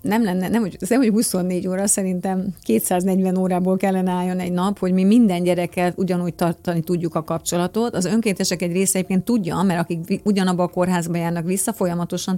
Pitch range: 175-195 Hz